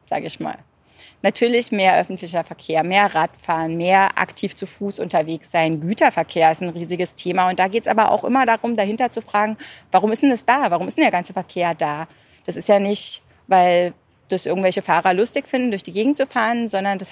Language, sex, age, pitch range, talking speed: German, female, 30-49, 175-220 Hz, 210 wpm